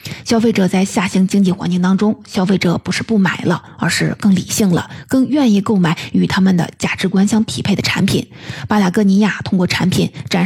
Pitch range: 180-215 Hz